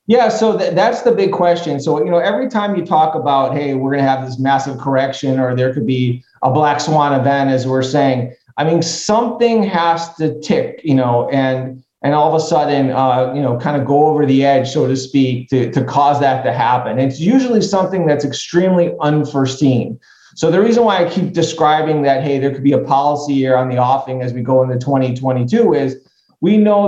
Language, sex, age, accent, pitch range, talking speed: English, male, 30-49, American, 130-155 Hz, 220 wpm